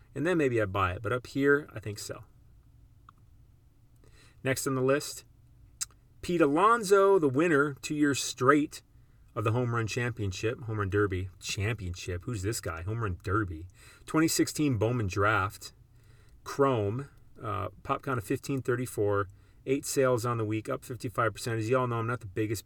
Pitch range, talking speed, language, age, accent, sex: 105-130 Hz, 165 wpm, English, 40-59, American, male